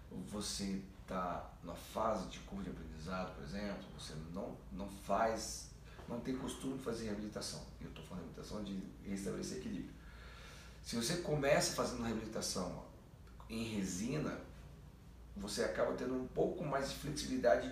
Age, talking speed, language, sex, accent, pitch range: 40-59, 150 wpm, Portuguese, male, Brazilian, 95-135 Hz